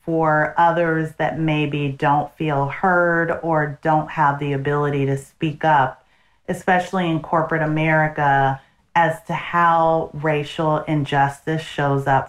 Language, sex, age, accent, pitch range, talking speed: English, female, 40-59, American, 145-170 Hz, 125 wpm